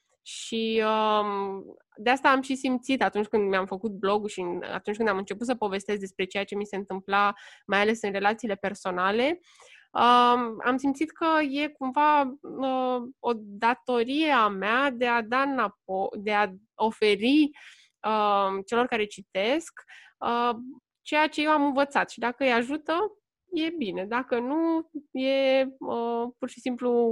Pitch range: 200-255 Hz